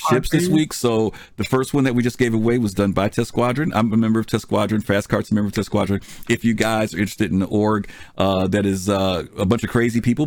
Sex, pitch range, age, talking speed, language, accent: male, 100-125 Hz, 50-69, 270 wpm, English, American